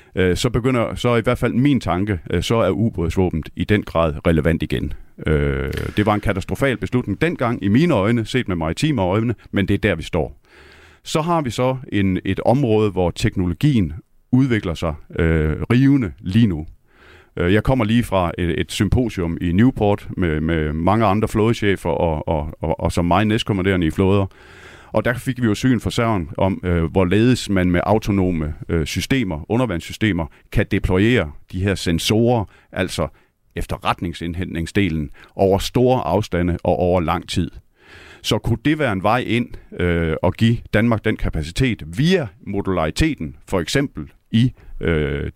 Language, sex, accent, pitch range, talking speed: Danish, male, native, 85-110 Hz, 160 wpm